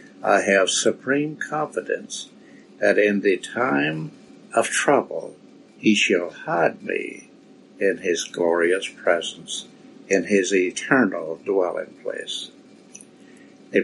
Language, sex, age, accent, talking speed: English, male, 60-79, American, 105 wpm